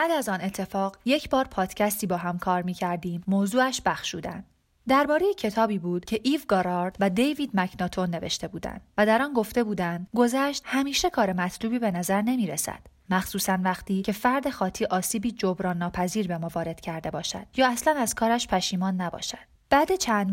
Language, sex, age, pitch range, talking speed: Persian, female, 30-49, 180-225 Hz, 175 wpm